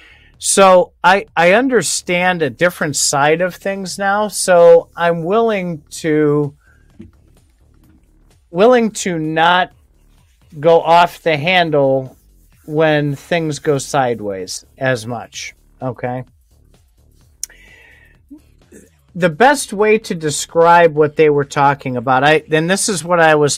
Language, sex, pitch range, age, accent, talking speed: English, male, 130-180 Hz, 40-59, American, 110 wpm